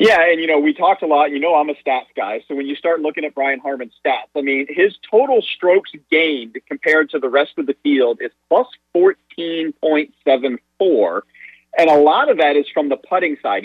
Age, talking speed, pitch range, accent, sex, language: 30-49, 215 wpm, 135-175 Hz, American, male, English